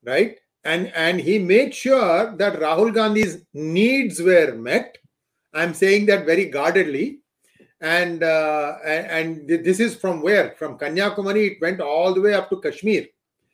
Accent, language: Indian, English